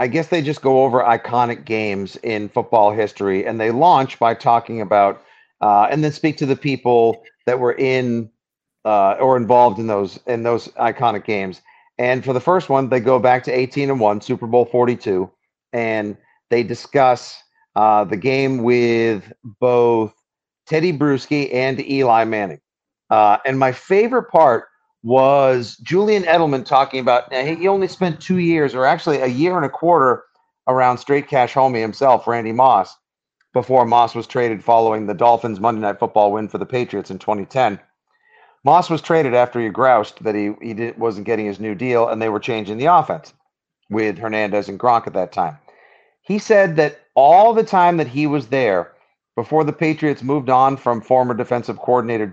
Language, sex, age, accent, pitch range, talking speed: English, male, 50-69, American, 110-135 Hz, 180 wpm